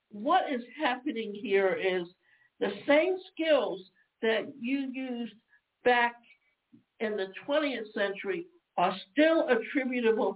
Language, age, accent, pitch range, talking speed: English, 60-79, American, 205-265 Hz, 110 wpm